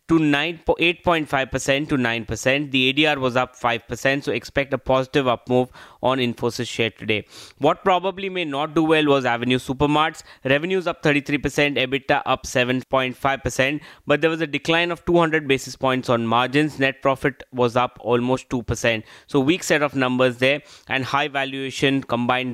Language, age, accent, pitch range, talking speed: English, 20-39, Indian, 125-145 Hz, 165 wpm